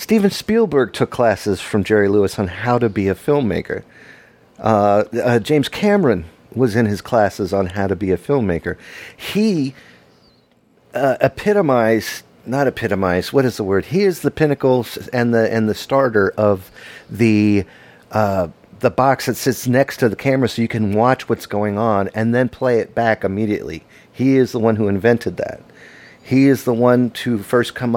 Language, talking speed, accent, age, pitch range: English, 180 wpm, American, 50-69, 100-130 Hz